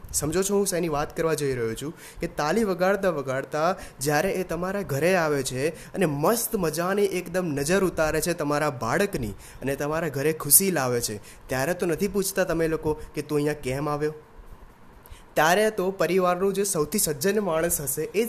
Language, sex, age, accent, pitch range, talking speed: Gujarati, male, 20-39, native, 140-185 Hz, 130 wpm